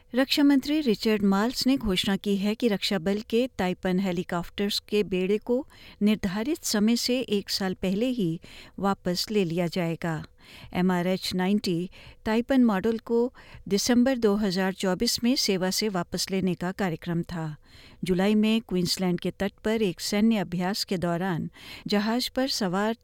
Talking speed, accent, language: 145 wpm, native, Hindi